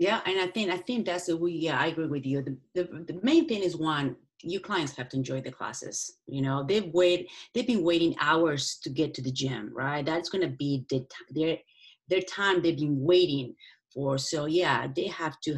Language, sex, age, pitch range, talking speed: English, female, 30-49, 140-185 Hz, 220 wpm